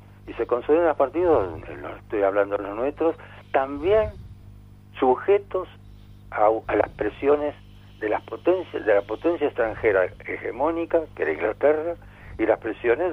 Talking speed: 135 wpm